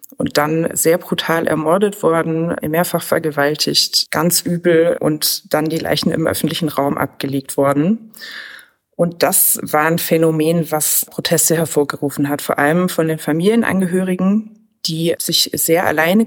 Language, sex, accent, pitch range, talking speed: German, female, German, 155-180 Hz, 135 wpm